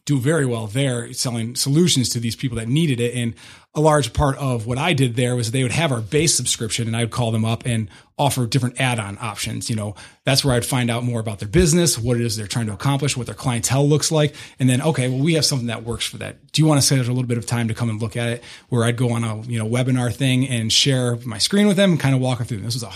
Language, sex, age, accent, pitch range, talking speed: English, male, 30-49, American, 120-140 Hz, 300 wpm